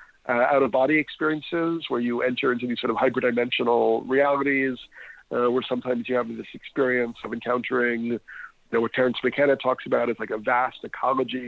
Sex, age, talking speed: male, 40-59, 185 wpm